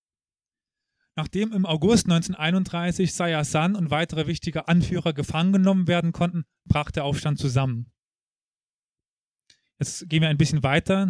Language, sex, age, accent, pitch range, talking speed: German, male, 30-49, German, 155-180 Hz, 130 wpm